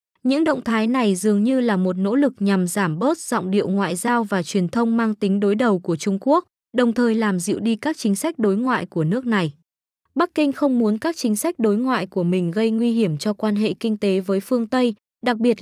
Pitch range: 195-245 Hz